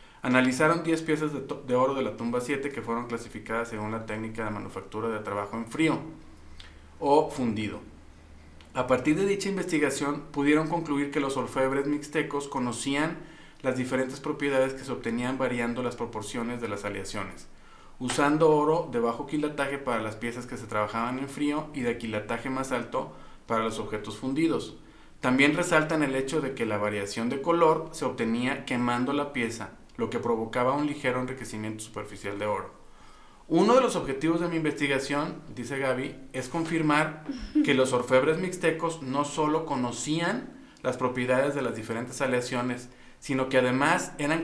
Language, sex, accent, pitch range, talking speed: Spanish, male, Mexican, 115-155 Hz, 165 wpm